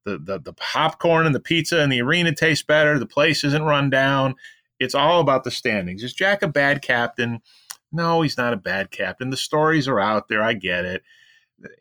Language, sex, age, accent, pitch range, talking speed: English, male, 30-49, American, 110-150 Hz, 210 wpm